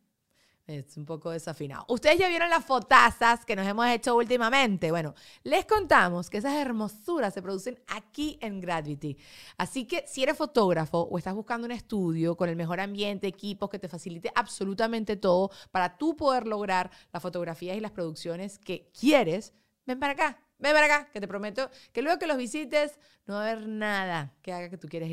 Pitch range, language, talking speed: 180-235 Hz, Spanish, 190 wpm